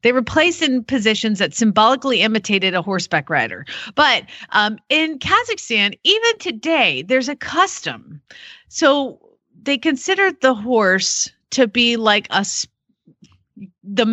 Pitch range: 210-295 Hz